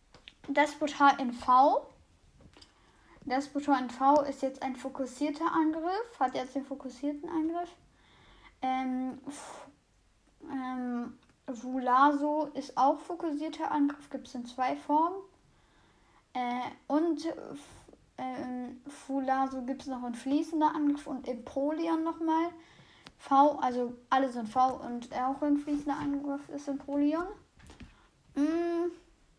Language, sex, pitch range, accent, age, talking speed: German, female, 255-300 Hz, German, 10-29, 120 wpm